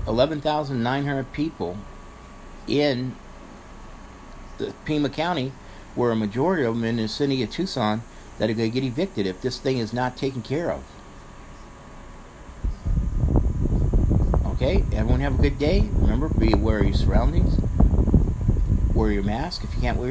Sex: male